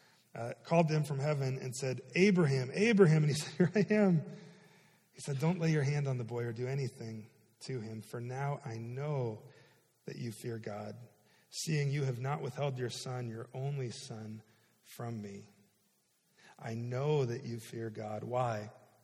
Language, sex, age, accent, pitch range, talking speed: English, male, 40-59, American, 120-165 Hz, 175 wpm